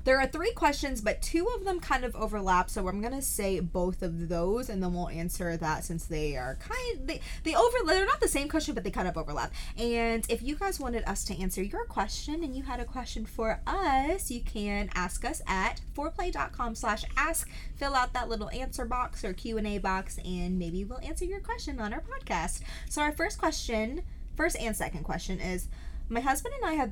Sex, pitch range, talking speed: female, 185-260 Hz, 220 wpm